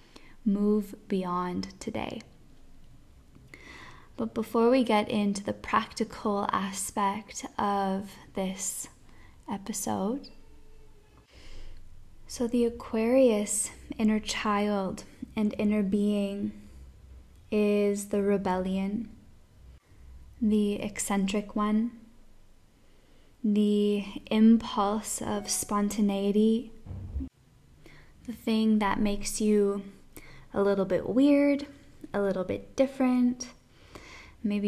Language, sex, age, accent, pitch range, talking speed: English, female, 10-29, American, 200-225 Hz, 80 wpm